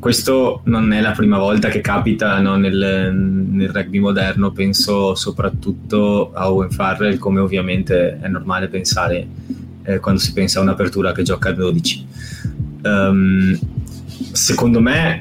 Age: 20-39